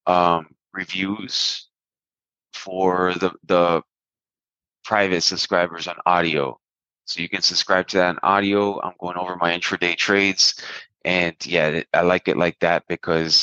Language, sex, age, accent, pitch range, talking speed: English, male, 20-39, American, 85-95 Hz, 140 wpm